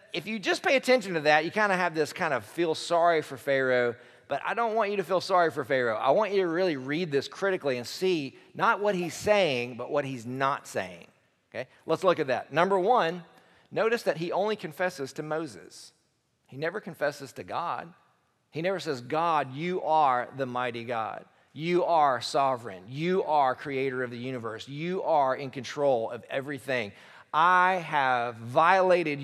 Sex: male